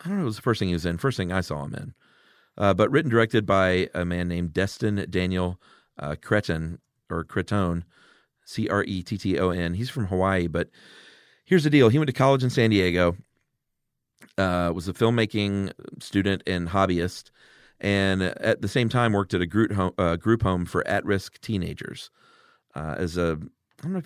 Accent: American